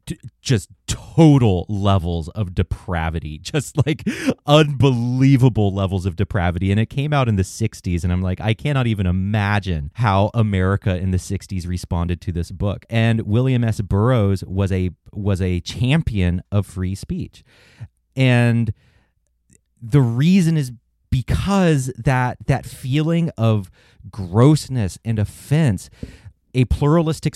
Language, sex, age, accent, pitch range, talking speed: English, male, 30-49, American, 95-125 Hz, 130 wpm